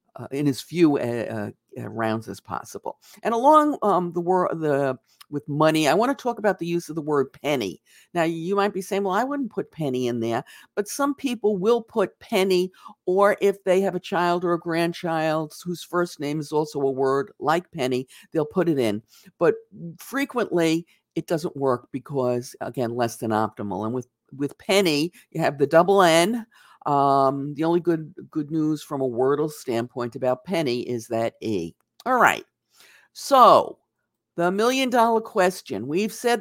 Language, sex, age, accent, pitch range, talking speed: English, female, 50-69, American, 145-200 Hz, 185 wpm